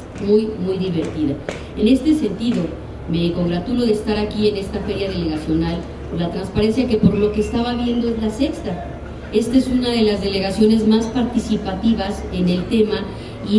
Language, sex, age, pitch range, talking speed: Spanish, female, 40-59, 190-220 Hz, 170 wpm